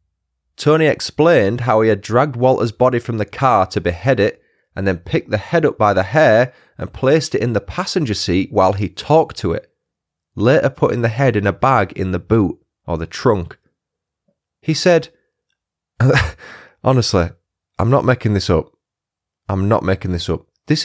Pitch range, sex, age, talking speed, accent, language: 95-130 Hz, male, 30-49, 180 wpm, British, English